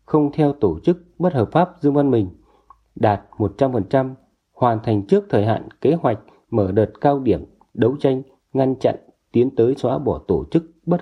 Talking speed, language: 185 wpm, Vietnamese